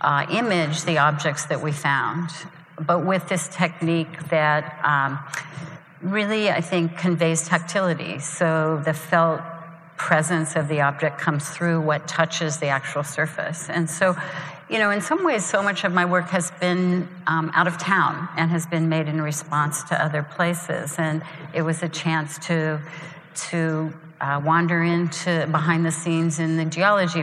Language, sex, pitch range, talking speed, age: English, female, 150-175 Hz, 165 wpm, 50-69